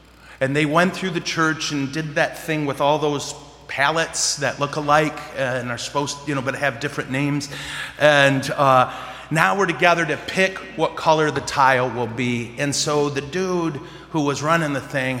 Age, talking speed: 30-49, 195 wpm